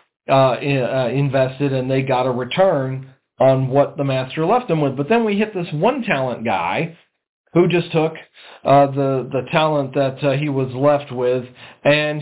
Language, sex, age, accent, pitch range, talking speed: English, male, 40-59, American, 125-145 Hz, 180 wpm